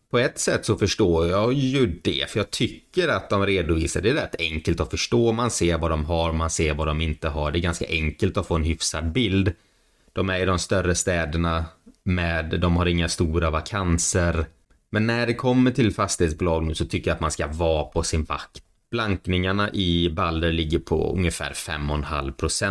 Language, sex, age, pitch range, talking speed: Swedish, male, 30-49, 80-95 Hz, 200 wpm